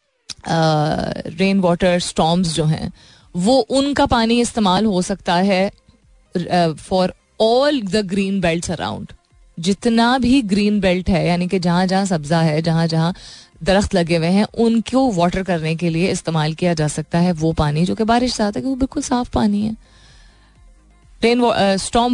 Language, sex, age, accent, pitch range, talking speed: Hindi, female, 20-39, native, 175-245 Hz, 160 wpm